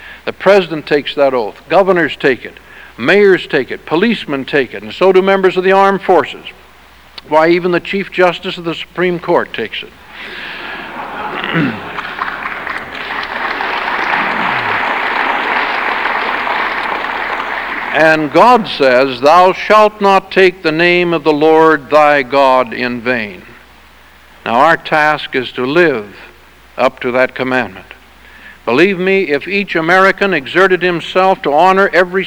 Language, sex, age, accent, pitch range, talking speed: English, male, 60-79, American, 145-190 Hz, 130 wpm